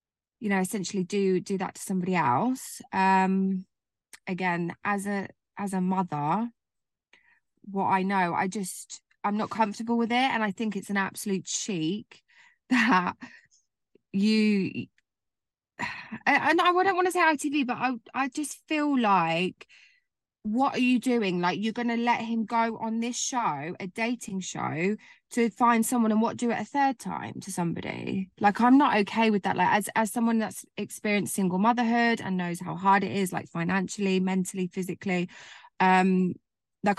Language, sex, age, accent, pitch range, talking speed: English, female, 20-39, British, 190-240 Hz, 165 wpm